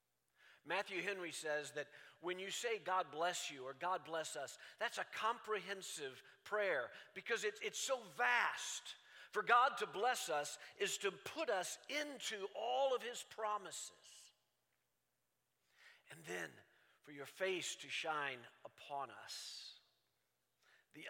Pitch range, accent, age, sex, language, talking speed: 160-215 Hz, American, 50-69, male, English, 135 wpm